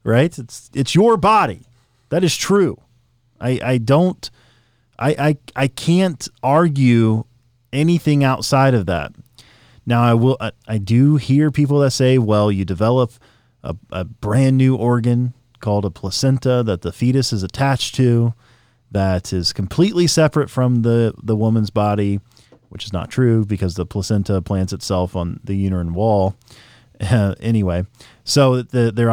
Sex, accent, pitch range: male, American, 105-135 Hz